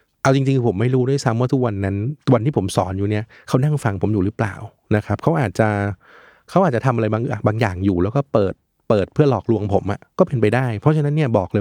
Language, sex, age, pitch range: Thai, male, 20-39, 100-130 Hz